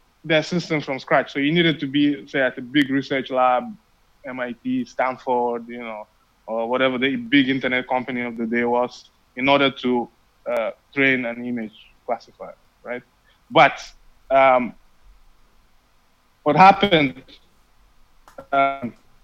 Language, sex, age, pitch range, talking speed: English, male, 20-39, 130-160 Hz, 135 wpm